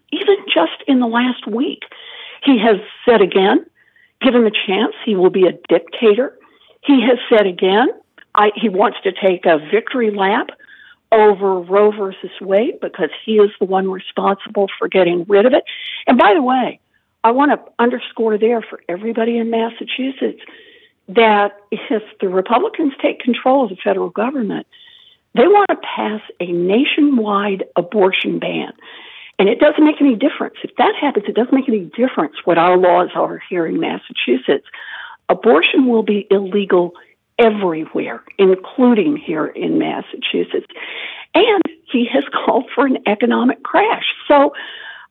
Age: 60-79